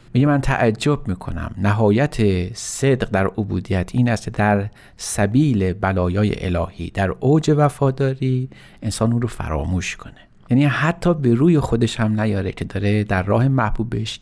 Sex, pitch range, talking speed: male, 100-135 Hz, 145 wpm